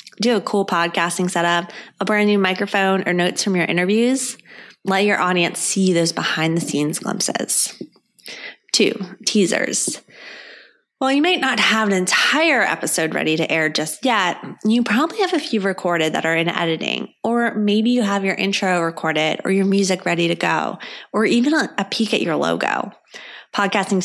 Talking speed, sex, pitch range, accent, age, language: 165 wpm, female, 170-215 Hz, American, 20-39, English